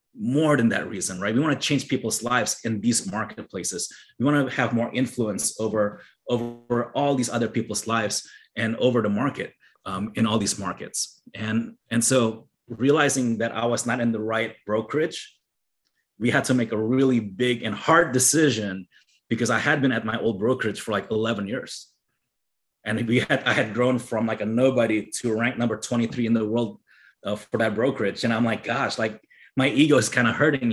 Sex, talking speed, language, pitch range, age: male, 200 wpm, English, 115-130 Hz, 30-49